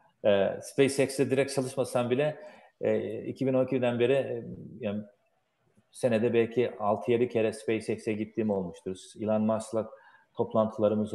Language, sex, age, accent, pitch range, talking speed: Turkish, male, 40-59, native, 105-125 Hz, 90 wpm